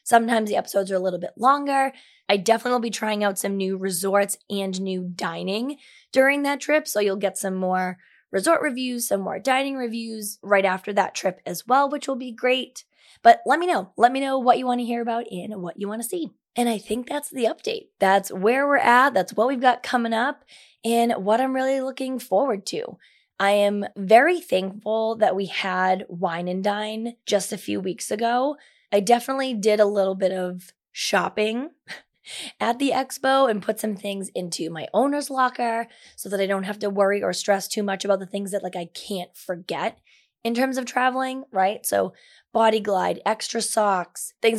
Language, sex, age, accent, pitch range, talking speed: English, female, 20-39, American, 195-255 Hz, 200 wpm